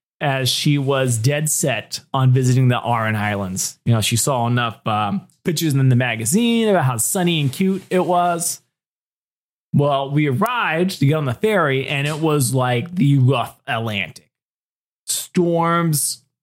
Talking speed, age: 155 wpm, 20-39